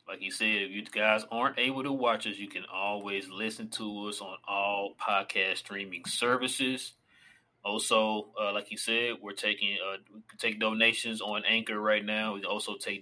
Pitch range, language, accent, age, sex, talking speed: 105-125 Hz, English, American, 20-39, male, 195 wpm